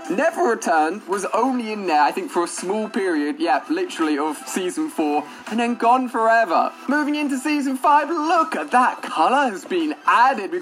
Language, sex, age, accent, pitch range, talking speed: English, male, 20-39, British, 205-295 Hz, 185 wpm